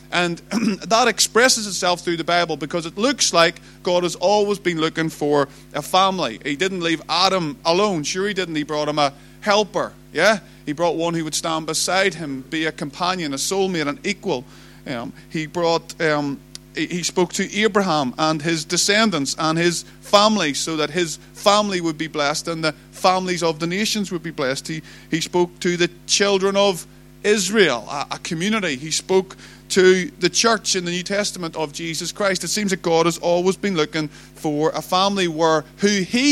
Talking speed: 190 wpm